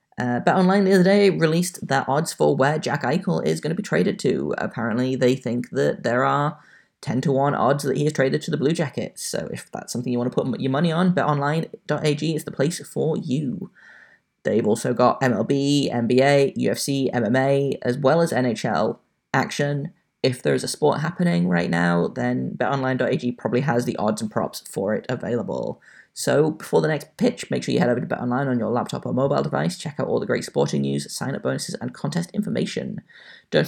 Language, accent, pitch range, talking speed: English, British, 125-165 Hz, 205 wpm